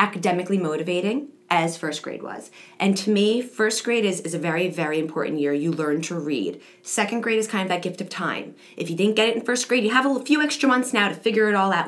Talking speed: 260 wpm